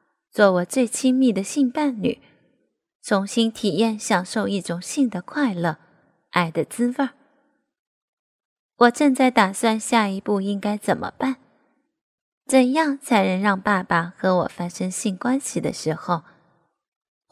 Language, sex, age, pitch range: Chinese, female, 20-39, 185-245 Hz